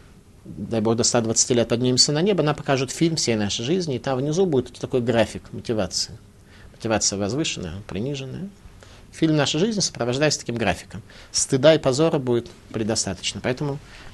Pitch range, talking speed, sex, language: 105-150 Hz, 155 wpm, male, Russian